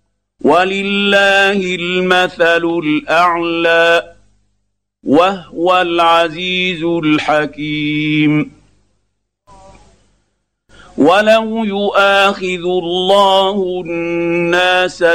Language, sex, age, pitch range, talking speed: Arabic, male, 50-69, 155-185 Hz, 40 wpm